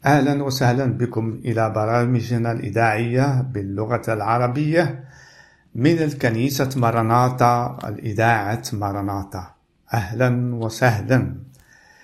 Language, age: Arabic, 50-69